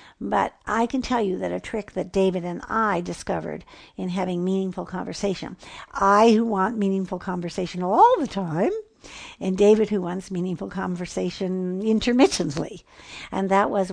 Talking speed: 145 wpm